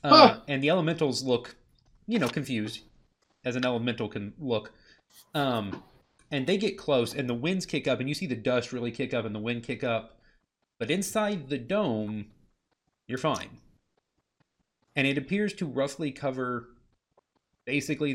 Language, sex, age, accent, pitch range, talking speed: English, male, 30-49, American, 110-145 Hz, 160 wpm